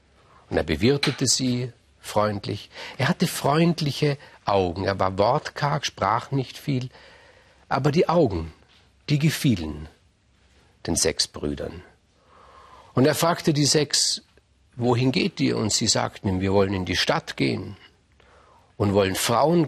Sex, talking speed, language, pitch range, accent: male, 130 wpm, German, 100-145 Hz, German